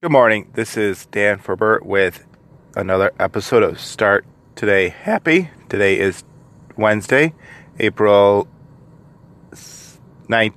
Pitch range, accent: 100-145 Hz, American